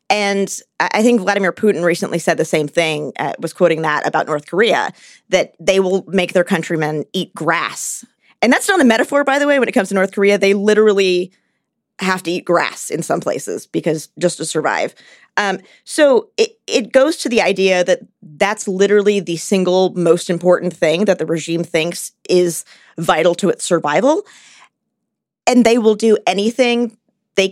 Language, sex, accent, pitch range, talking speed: English, female, American, 170-215 Hz, 180 wpm